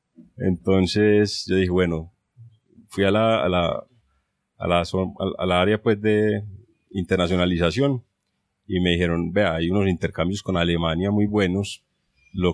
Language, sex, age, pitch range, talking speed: Spanish, male, 30-49, 90-110 Hz, 140 wpm